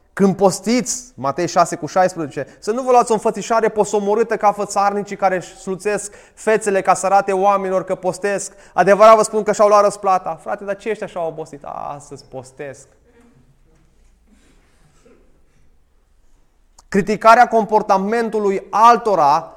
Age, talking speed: 20-39, 125 wpm